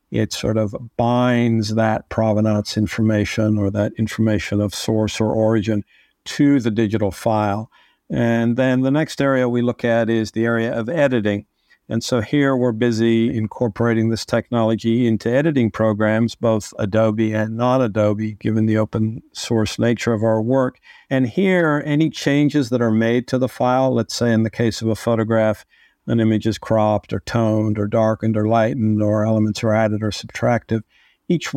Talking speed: 170 wpm